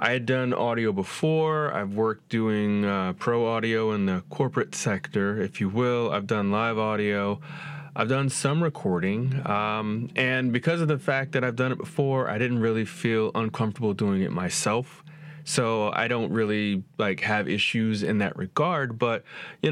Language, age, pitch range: English, 30-49, 105-135 Hz